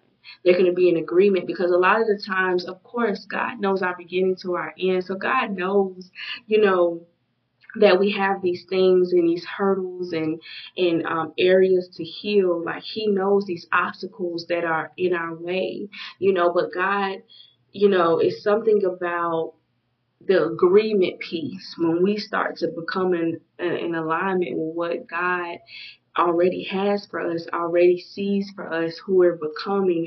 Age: 20-39